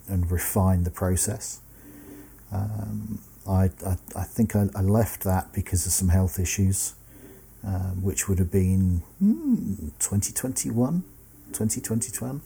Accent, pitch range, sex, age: British, 95-105 Hz, male, 40-59